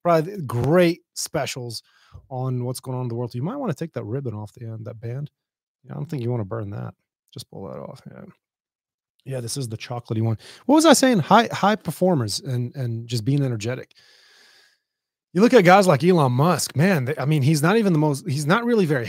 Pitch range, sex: 120-160 Hz, male